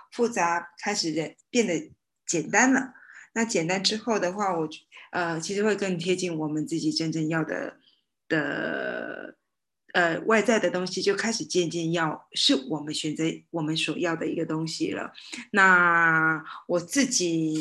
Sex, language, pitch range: female, Chinese, 160-190 Hz